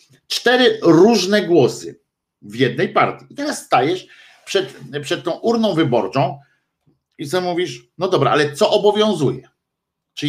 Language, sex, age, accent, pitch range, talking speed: Polish, male, 50-69, native, 130-180 Hz, 135 wpm